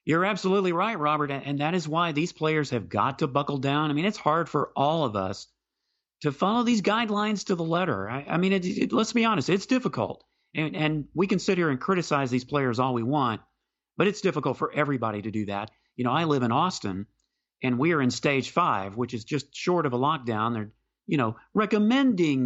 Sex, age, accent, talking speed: male, 40-59, American, 220 wpm